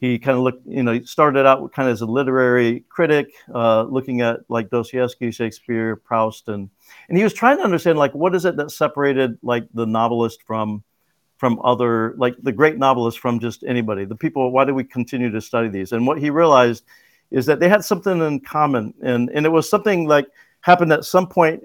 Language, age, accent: English, 50-69, American